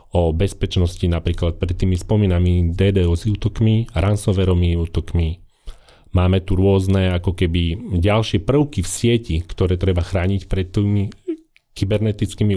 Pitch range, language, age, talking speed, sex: 90-110 Hz, Slovak, 40-59, 125 wpm, male